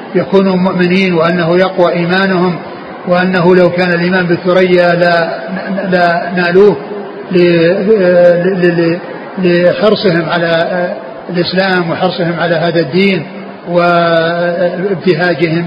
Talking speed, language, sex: 90 wpm, Arabic, male